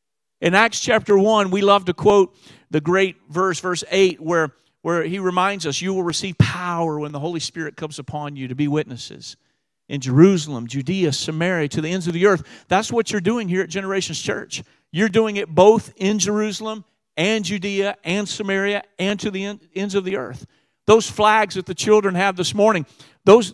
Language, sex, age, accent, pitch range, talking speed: English, male, 50-69, American, 170-220 Hz, 195 wpm